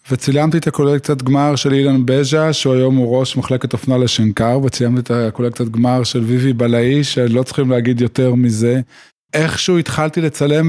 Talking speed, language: 155 wpm, Hebrew